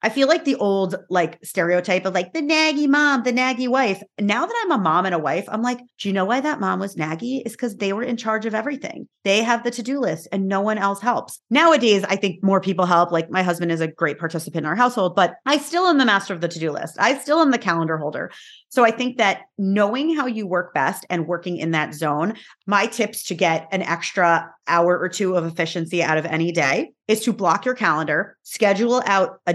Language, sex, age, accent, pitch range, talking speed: English, female, 30-49, American, 175-230 Hz, 245 wpm